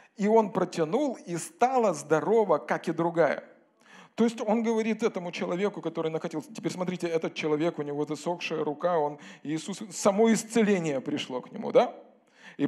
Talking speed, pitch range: 160 wpm, 160-235 Hz